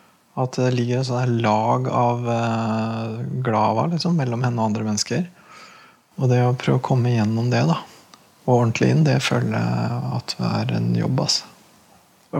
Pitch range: 105-125 Hz